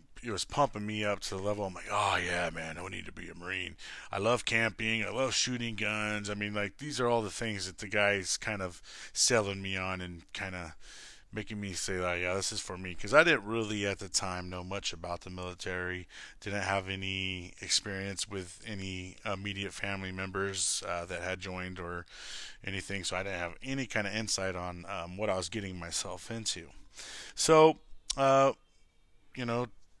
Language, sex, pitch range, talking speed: English, male, 95-115 Hz, 205 wpm